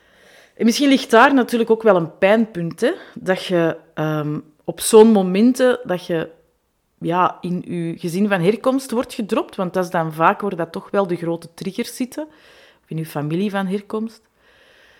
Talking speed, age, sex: 175 wpm, 30-49, female